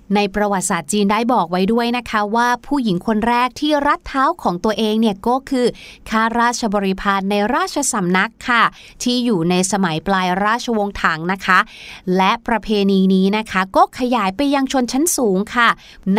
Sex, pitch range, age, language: female, 200-250 Hz, 20-39, Thai